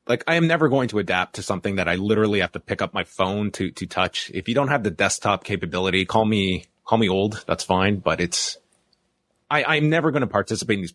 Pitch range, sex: 90-130 Hz, male